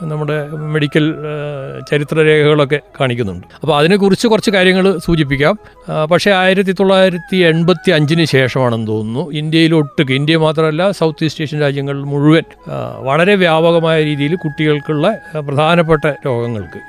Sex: male